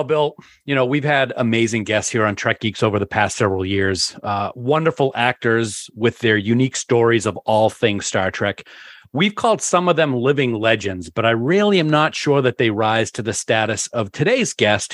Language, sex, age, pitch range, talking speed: English, male, 40-59, 115-160 Hz, 205 wpm